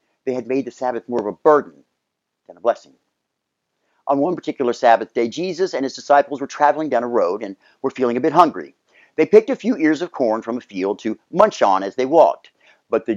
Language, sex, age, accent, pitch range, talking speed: English, male, 50-69, American, 120-185 Hz, 230 wpm